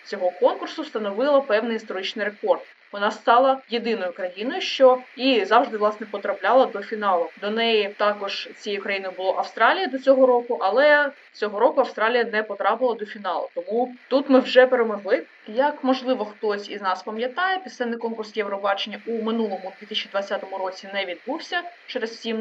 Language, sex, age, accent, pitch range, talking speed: Ukrainian, female, 20-39, native, 200-265 Hz, 155 wpm